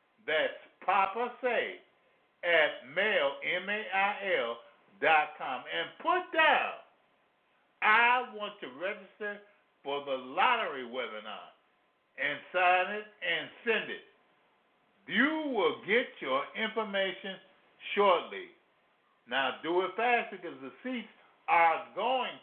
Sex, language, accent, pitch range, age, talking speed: male, English, American, 185-250 Hz, 50-69, 105 wpm